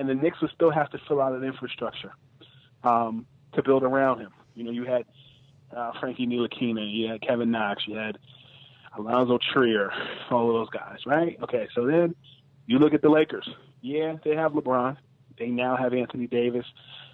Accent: American